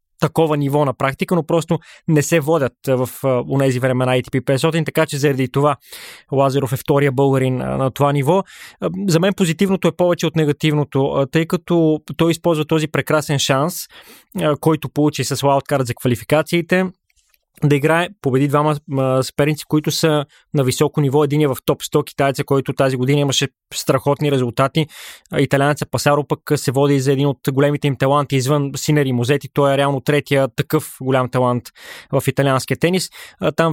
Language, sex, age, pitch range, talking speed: Bulgarian, male, 20-39, 135-155 Hz, 175 wpm